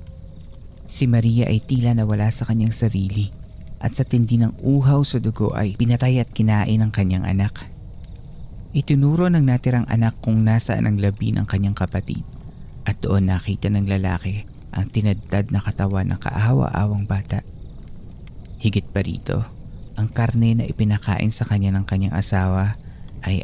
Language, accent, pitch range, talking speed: Filipino, native, 95-115 Hz, 150 wpm